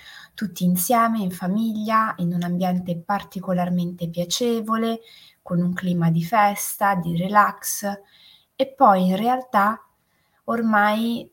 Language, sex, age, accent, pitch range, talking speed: Italian, female, 20-39, native, 175-215 Hz, 110 wpm